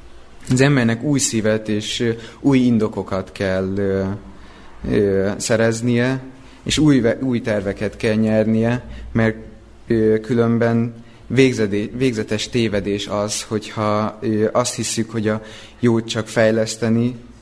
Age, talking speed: 30-49, 95 wpm